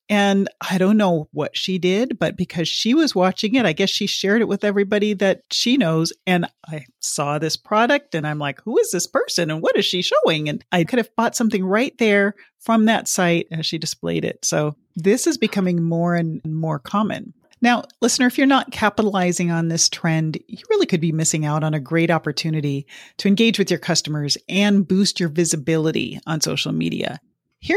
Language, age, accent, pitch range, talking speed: English, 40-59, American, 165-230 Hz, 205 wpm